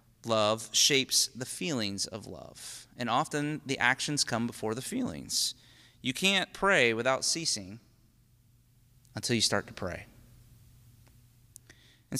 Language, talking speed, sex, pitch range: English, 125 wpm, male, 120-145 Hz